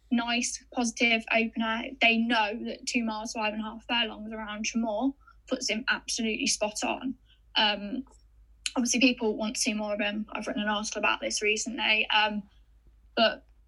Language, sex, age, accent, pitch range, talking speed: English, female, 10-29, British, 215-260 Hz, 165 wpm